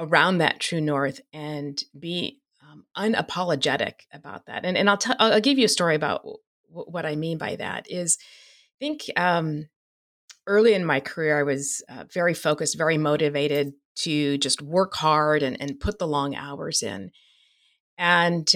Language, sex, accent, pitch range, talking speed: English, female, American, 150-185 Hz, 170 wpm